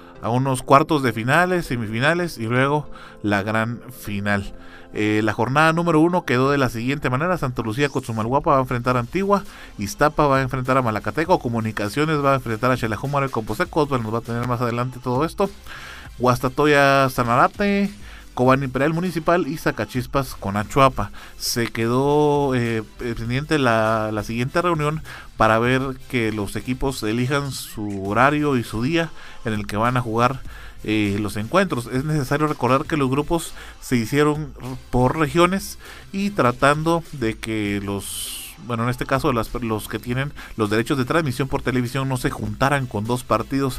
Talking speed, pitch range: 170 wpm, 110-140 Hz